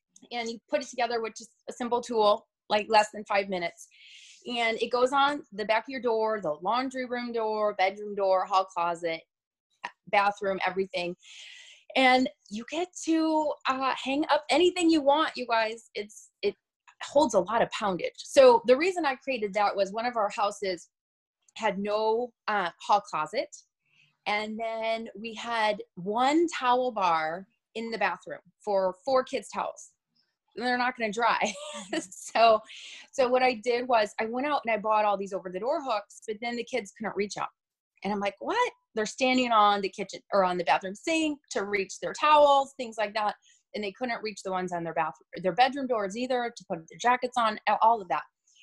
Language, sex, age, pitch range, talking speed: English, female, 20-39, 195-255 Hz, 190 wpm